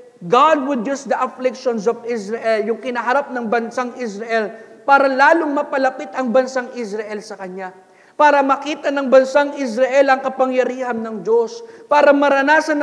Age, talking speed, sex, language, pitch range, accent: 40-59, 145 wpm, male, English, 230-285 Hz, Filipino